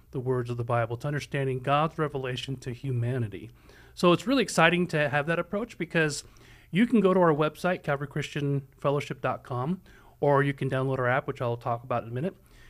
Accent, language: American, English